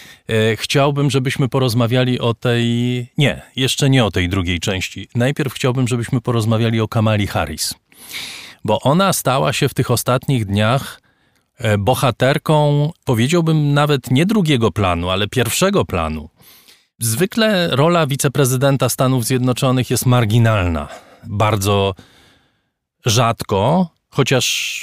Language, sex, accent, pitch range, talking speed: Polish, male, native, 110-140 Hz, 110 wpm